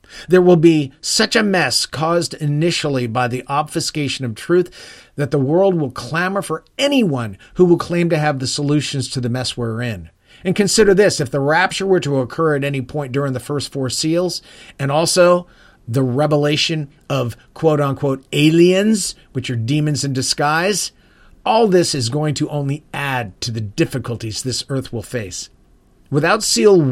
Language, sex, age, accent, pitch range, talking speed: English, male, 40-59, American, 125-170 Hz, 170 wpm